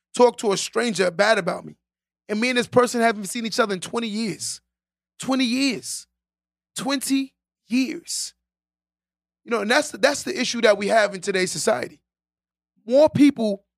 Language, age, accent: English, 20-39, American